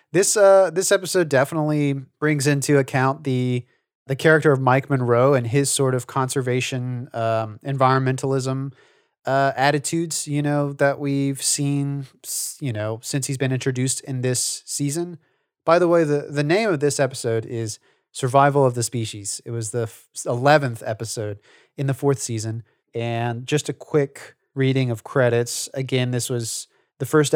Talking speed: 160 wpm